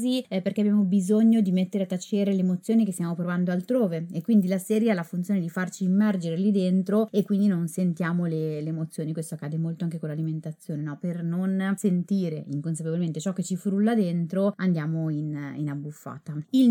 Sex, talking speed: female, 190 wpm